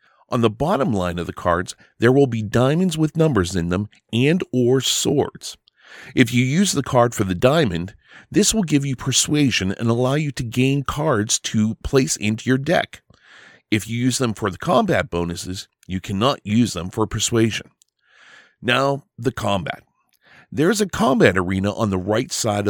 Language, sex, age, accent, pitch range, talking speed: English, male, 40-59, American, 105-140 Hz, 180 wpm